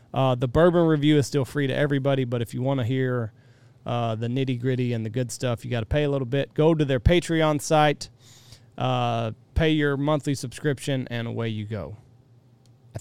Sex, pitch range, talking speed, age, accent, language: male, 120-150 Hz, 205 wpm, 30-49, American, English